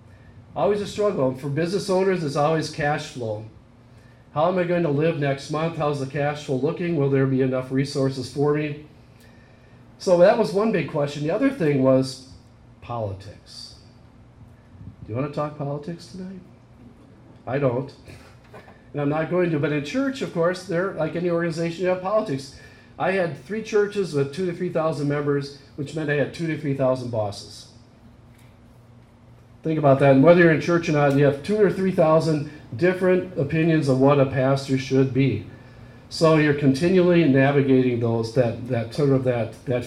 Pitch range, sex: 120-155 Hz, male